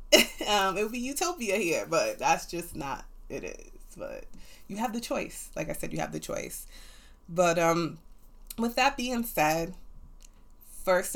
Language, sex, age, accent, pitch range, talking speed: English, female, 20-39, American, 165-215 Hz, 165 wpm